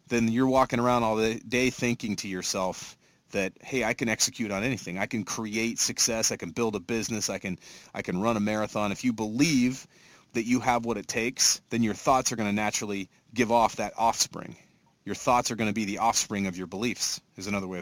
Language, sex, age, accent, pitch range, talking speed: English, male, 30-49, American, 105-125 Hz, 220 wpm